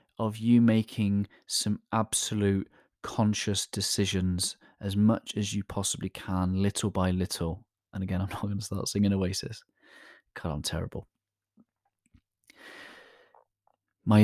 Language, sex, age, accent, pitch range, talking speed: English, male, 30-49, British, 95-105 Hz, 120 wpm